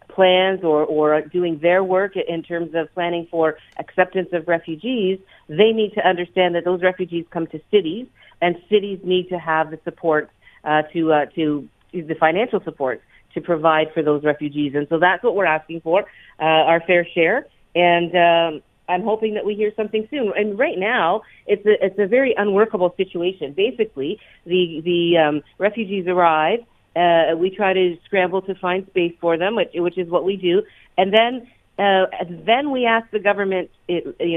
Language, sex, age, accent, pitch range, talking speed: English, female, 50-69, American, 160-195 Hz, 180 wpm